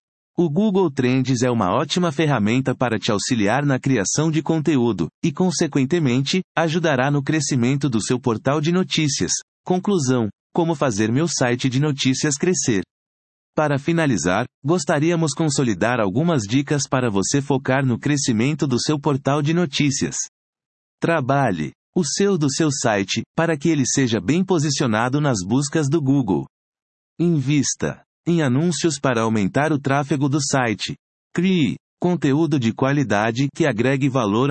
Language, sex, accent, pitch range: Portuguese, male, Brazilian, 125-160 Hz